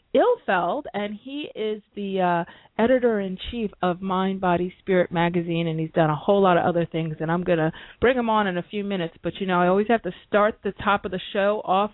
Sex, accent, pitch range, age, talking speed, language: female, American, 180-225 Hz, 30-49, 235 wpm, English